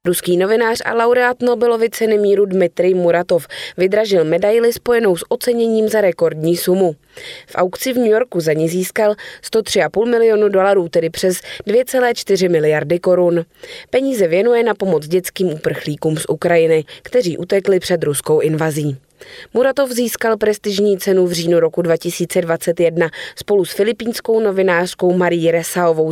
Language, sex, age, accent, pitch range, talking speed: Czech, female, 20-39, native, 170-220 Hz, 135 wpm